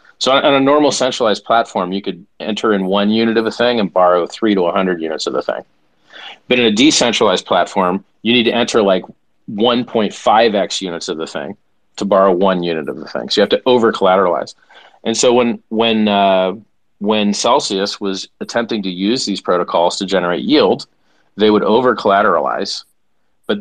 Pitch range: 95-120 Hz